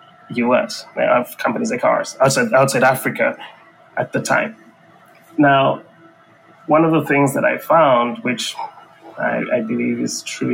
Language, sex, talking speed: English, male, 140 wpm